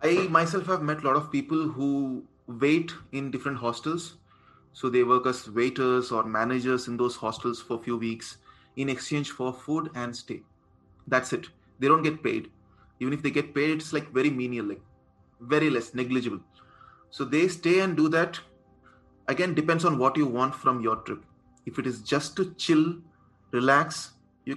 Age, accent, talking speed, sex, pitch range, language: 20-39, native, 185 wpm, male, 125-155 Hz, Hindi